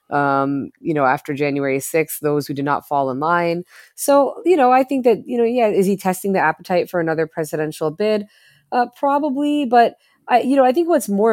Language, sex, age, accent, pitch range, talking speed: English, female, 20-39, American, 150-195 Hz, 210 wpm